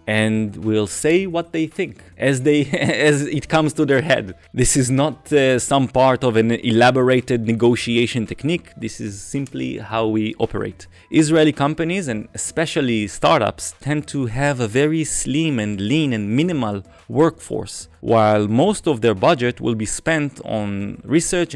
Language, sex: Chinese, male